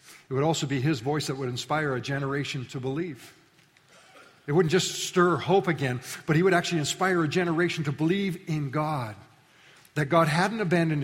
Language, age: English, 50-69